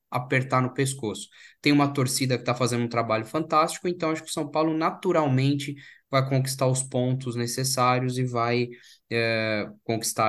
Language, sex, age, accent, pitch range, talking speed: Portuguese, male, 10-29, Brazilian, 115-135 Hz, 165 wpm